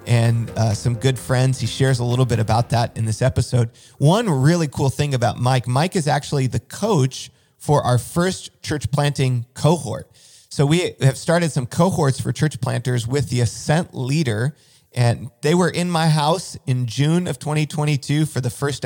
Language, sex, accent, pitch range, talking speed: English, male, American, 125-150 Hz, 185 wpm